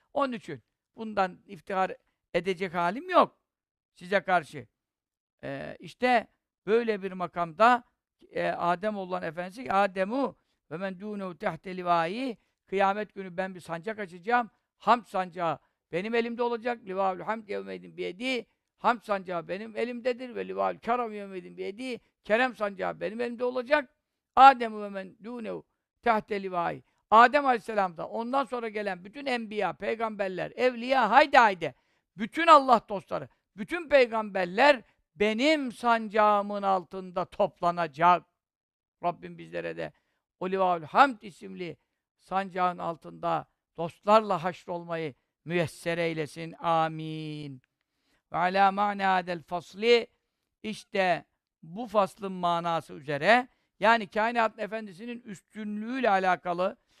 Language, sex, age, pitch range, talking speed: Turkish, male, 50-69, 175-230 Hz, 110 wpm